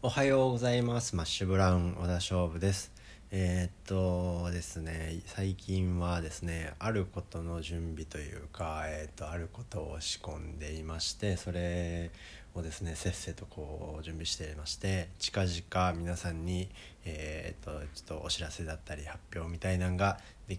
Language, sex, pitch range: Japanese, male, 80-95 Hz